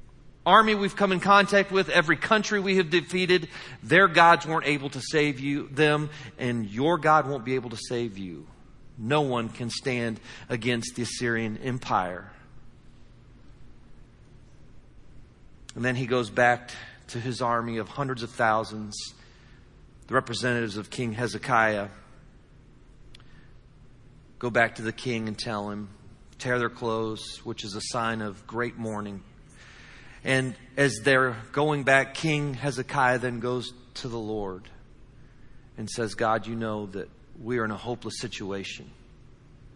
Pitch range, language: 115-135 Hz, English